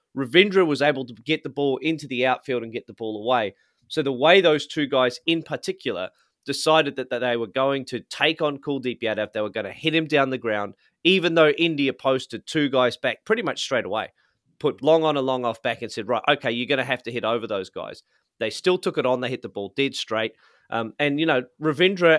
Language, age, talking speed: English, 30-49, 240 wpm